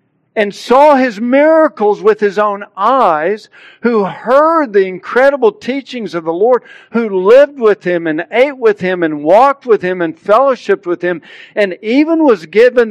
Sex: male